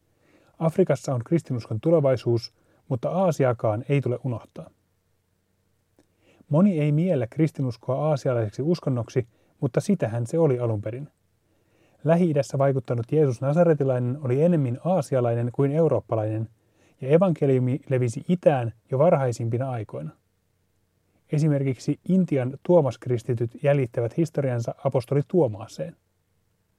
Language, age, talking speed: Finnish, 30-49, 95 wpm